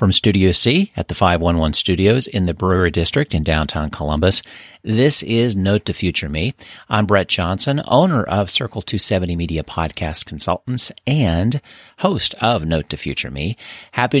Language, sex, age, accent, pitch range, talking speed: English, male, 40-59, American, 85-115 Hz, 160 wpm